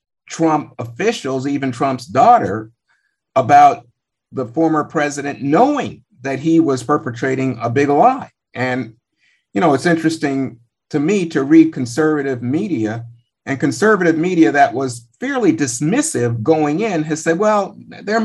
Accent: American